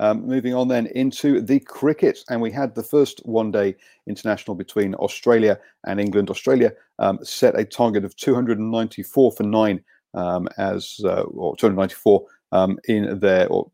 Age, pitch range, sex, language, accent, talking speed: 40-59, 100-125 Hz, male, English, British, 185 wpm